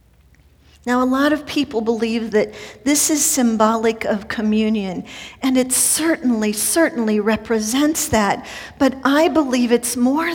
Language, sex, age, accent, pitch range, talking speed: English, female, 50-69, American, 230-300 Hz, 135 wpm